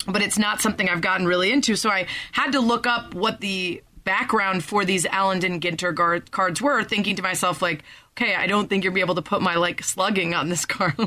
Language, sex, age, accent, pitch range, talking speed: English, female, 30-49, American, 180-230 Hz, 220 wpm